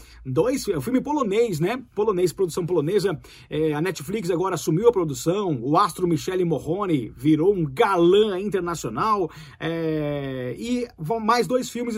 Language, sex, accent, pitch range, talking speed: Portuguese, male, Brazilian, 170-235 Hz, 135 wpm